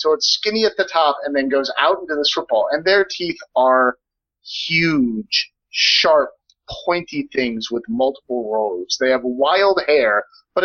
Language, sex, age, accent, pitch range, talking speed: English, male, 30-49, American, 130-210 Hz, 170 wpm